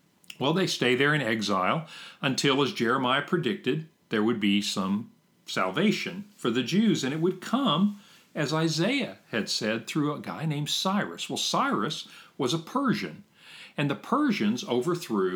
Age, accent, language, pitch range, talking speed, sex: 50-69, American, English, 125-200 Hz, 155 wpm, male